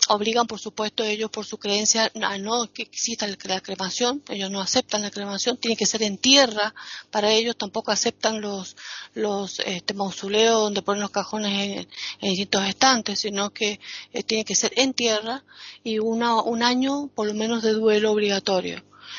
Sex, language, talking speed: female, Spanish, 170 wpm